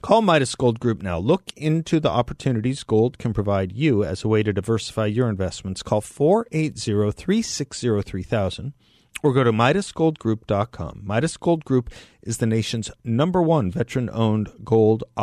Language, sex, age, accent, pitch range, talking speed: English, male, 50-69, American, 100-130 Hz, 140 wpm